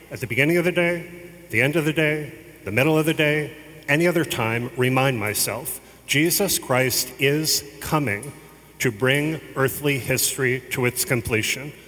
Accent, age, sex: American, 40-59, male